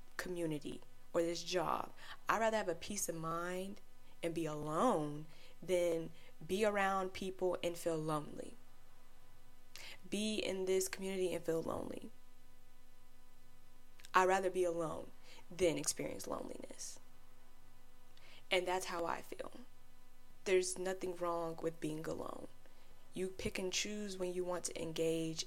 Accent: American